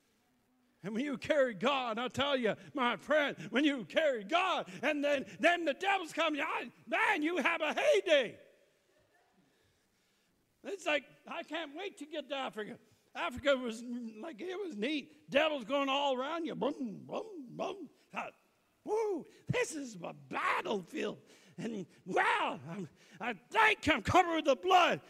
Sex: male